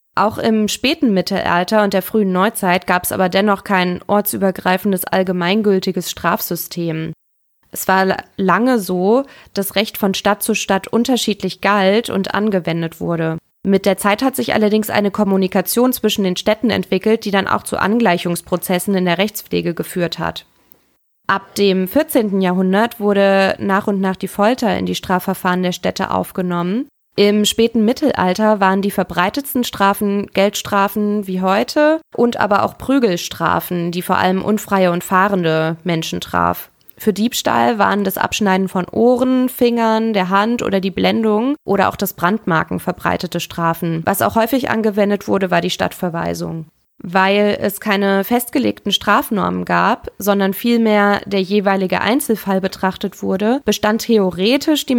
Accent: German